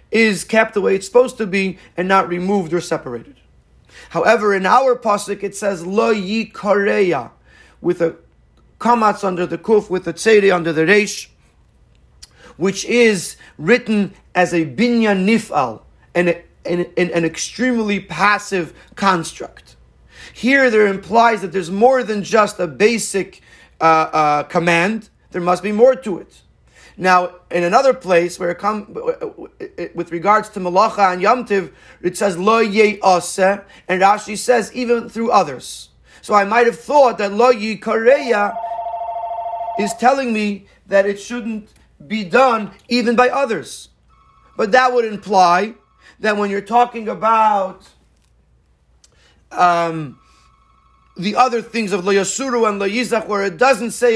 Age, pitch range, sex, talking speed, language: 40-59, 180-230 Hz, male, 140 wpm, English